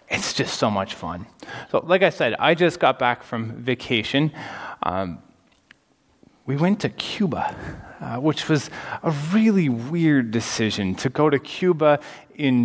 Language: English